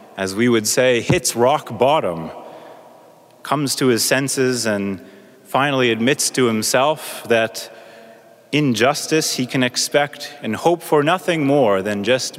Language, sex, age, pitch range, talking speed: English, male, 30-49, 120-155 Hz, 135 wpm